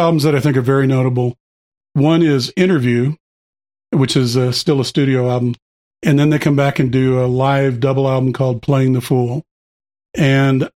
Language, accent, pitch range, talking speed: English, American, 130-150 Hz, 185 wpm